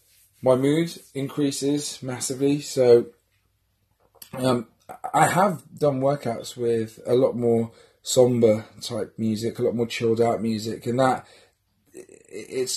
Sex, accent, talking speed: male, British, 120 wpm